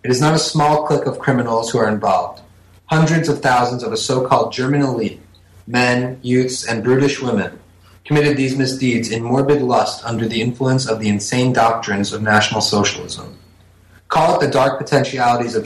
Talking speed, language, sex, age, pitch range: 175 wpm, English, male, 30-49, 110-135 Hz